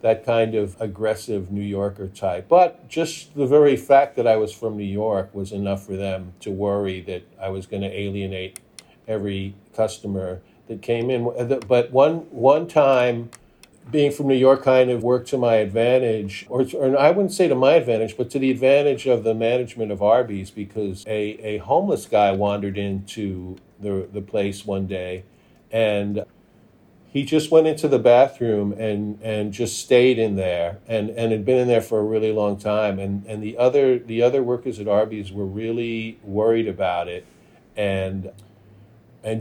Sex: male